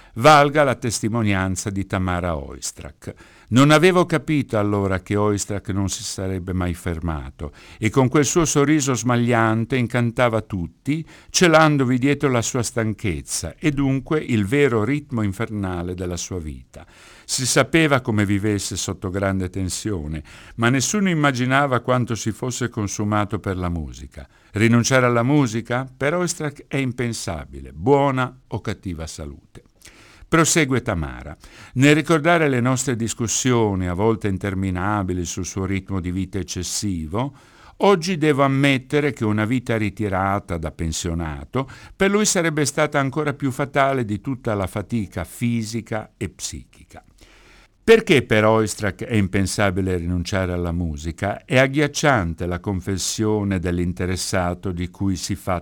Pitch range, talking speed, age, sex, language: 95-130 Hz, 135 wpm, 60-79, male, Italian